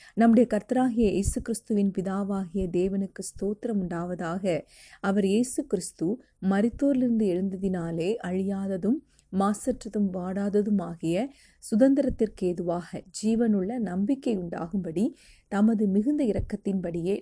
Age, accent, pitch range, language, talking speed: 30-49, native, 185-225 Hz, Tamil, 85 wpm